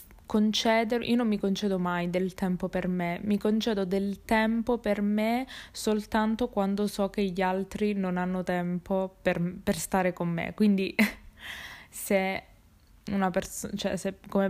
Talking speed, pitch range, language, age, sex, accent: 150 wpm, 185-210 Hz, Italian, 20-39, female, native